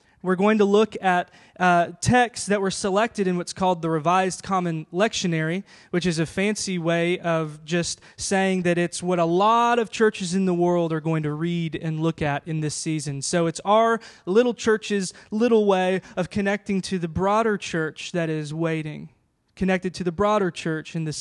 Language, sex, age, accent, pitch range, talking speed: English, male, 20-39, American, 160-200 Hz, 190 wpm